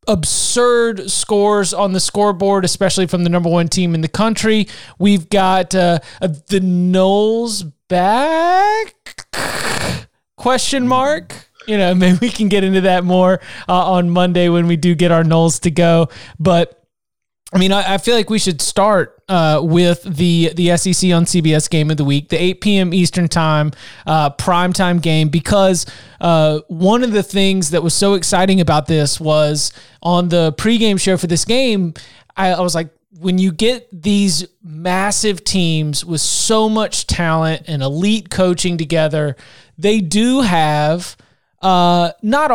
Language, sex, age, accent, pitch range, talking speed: English, male, 20-39, American, 165-195 Hz, 160 wpm